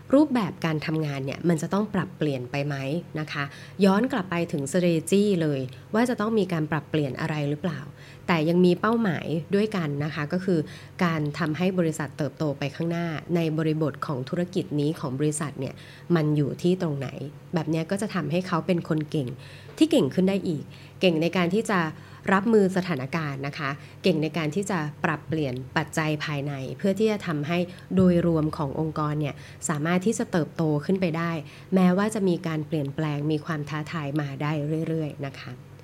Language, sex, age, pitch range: Thai, female, 20-39, 145-185 Hz